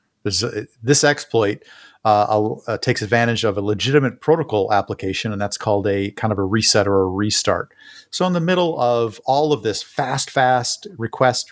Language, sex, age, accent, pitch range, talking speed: English, male, 40-59, American, 100-130 Hz, 170 wpm